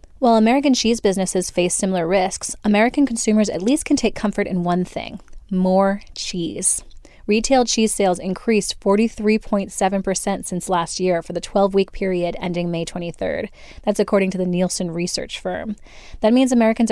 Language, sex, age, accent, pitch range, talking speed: English, female, 20-39, American, 180-225 Hz, 155 wpm